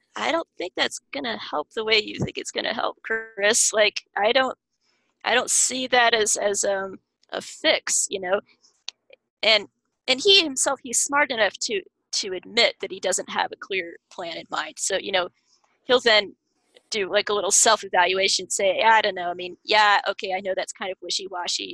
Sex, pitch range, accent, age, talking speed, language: female, 195-295 Hz, American, 20-39, 200 wpm, English